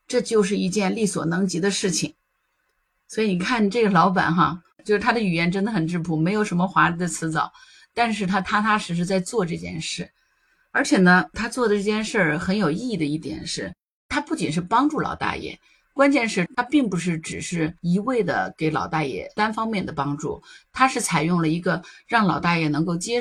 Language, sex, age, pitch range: Chinese, female, 50-69, 160-210 Hz